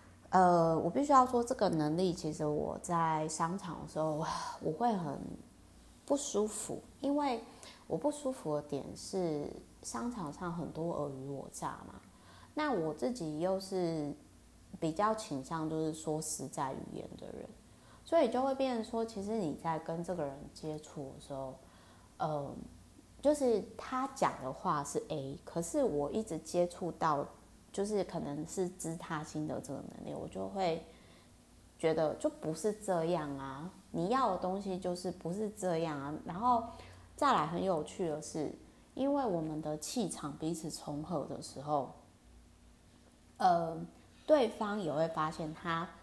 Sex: female